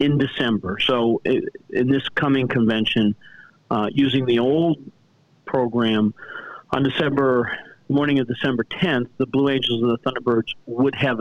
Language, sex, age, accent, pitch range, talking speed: English, male, 50-69, American, 115-140 Hz, 140 wpm